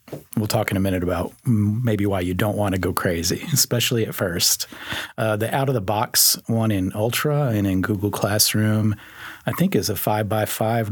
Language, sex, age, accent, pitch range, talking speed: English, male, 40-59, American, 95-115 Hz, 180 wpm